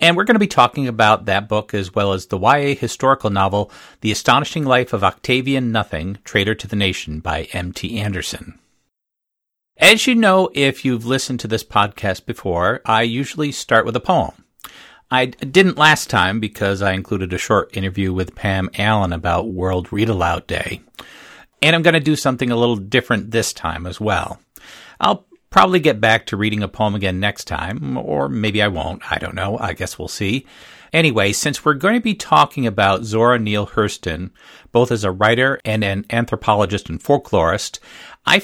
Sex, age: male, 50-69